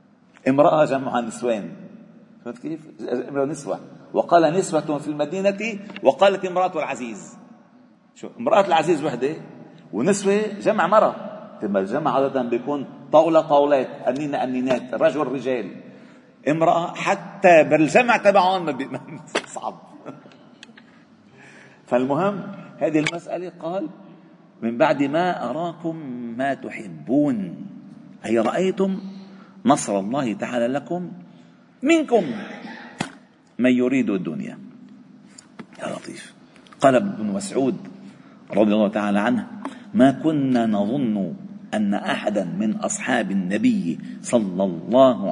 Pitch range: 135-215 Hz